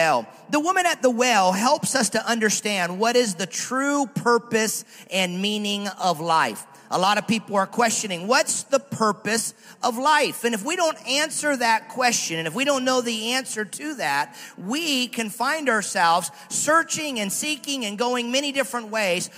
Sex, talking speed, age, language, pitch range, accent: male, 175 wpm, 40-59, English, 210-265 Hz, American